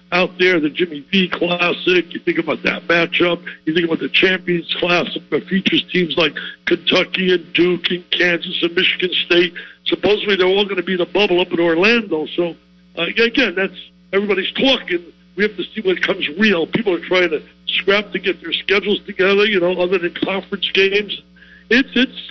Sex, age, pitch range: male, 60-79, 175-210 Hz